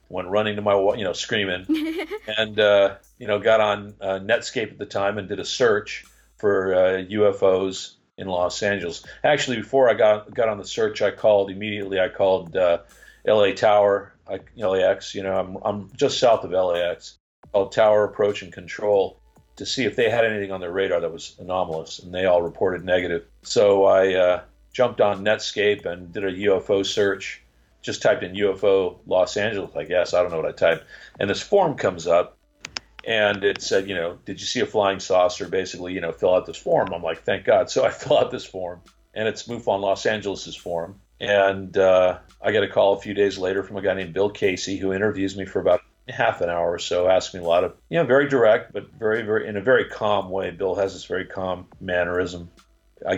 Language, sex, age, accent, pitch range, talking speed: English, male, 50-69, American, 90-105 Hz, 215 wpm